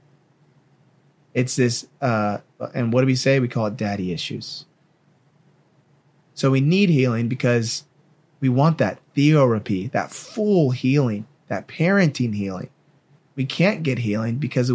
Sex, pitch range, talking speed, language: male, 120-155 Hz, 135 wpm, English